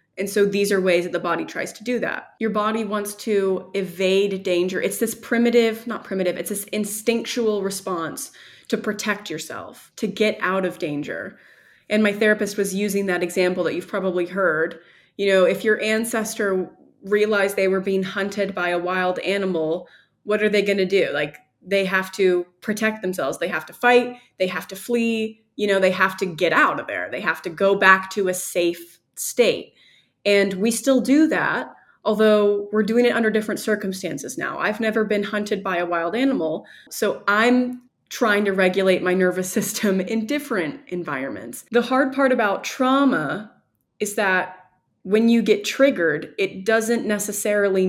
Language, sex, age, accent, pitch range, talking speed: English, female, 20-39, American, 185-220 Hz, 180 wpm